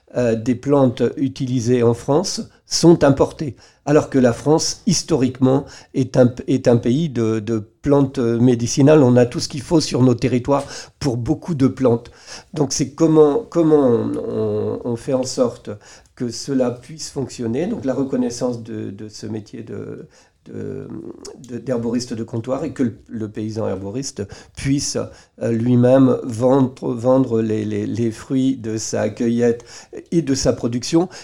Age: 50-69